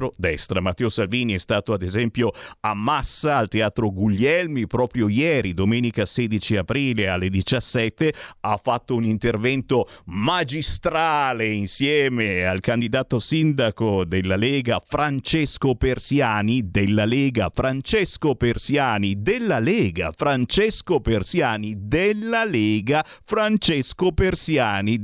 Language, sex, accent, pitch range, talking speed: Italian, male, native, 110-165 Hz, 105 wpm